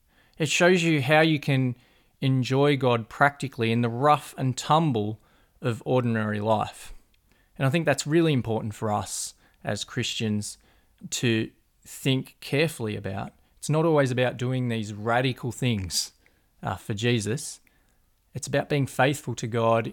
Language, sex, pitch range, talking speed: English, male, 110-145 Hz, 145 wpm